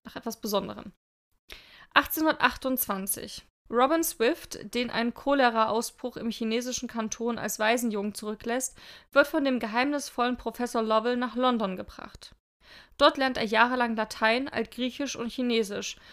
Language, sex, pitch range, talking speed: German, female, 220-255 Hz, 120 wpm